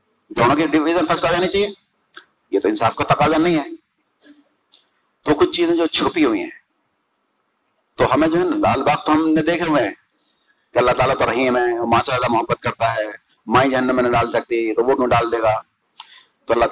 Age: 50-69